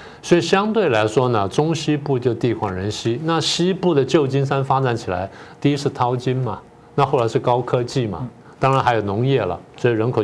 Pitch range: 115-150 Hz